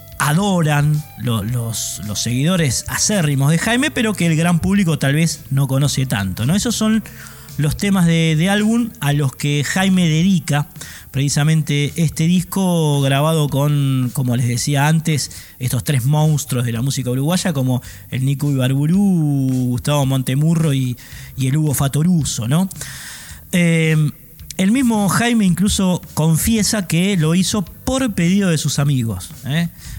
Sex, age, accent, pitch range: male, 20-39, Argentinian, 130-170 Hz